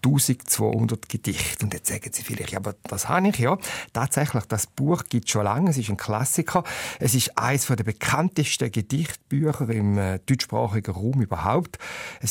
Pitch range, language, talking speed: 110-145 Hz, German, 170 wpm